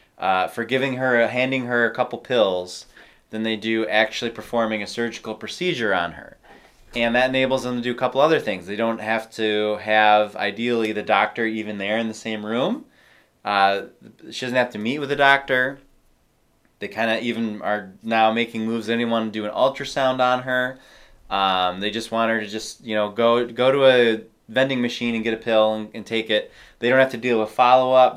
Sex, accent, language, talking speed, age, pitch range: male, American, English, 205 wpm, 20-39, 110-125 Hz